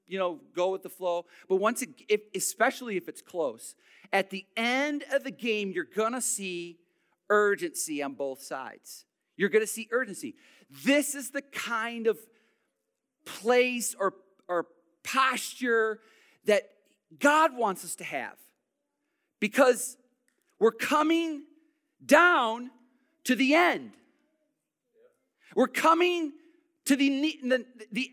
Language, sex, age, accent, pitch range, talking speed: English, male, 40-59, American, 195-285 Hz, 125 wpm